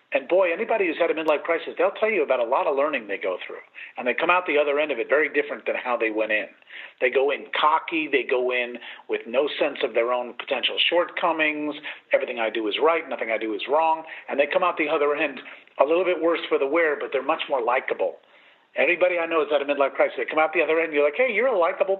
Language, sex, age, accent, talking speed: English, male, 50-69, American, 270 wpm